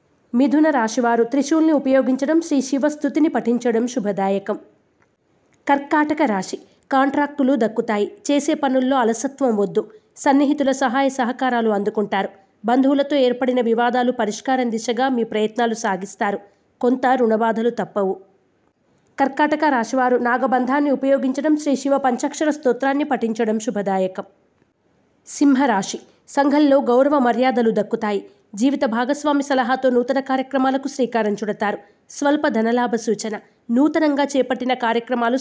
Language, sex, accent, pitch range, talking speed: Telugu, female, native, 230-280 Hz, 100 wpm